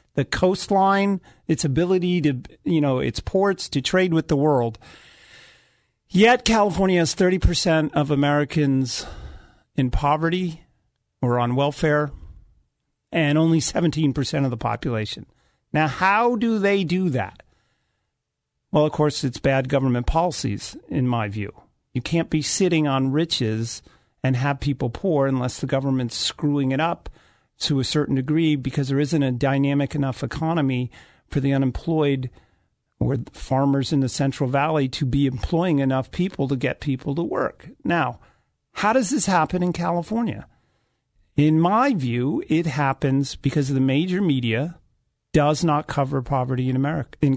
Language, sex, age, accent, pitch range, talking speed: English, male, 50-69, American, 130-170 Hz, 145 wpm